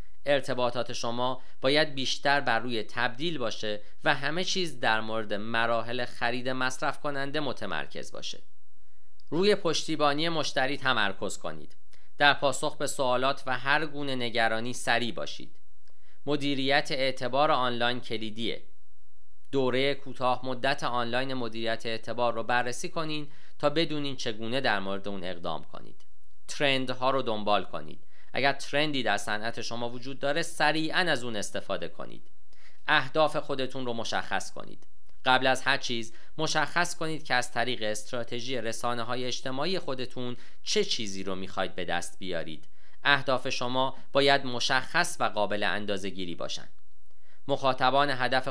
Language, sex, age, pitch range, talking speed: Persian, male, 40-59, 115-140 Hz, 135 wpm